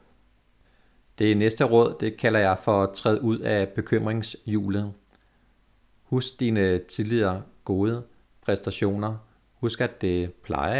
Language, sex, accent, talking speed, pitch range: Danish, male, native, 110 wpm, 95-110 Hz